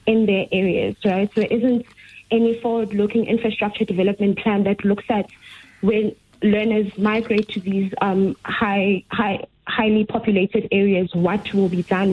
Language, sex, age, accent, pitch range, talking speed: English, female, 20-39, South African, 195-220 Hz, 150 wpm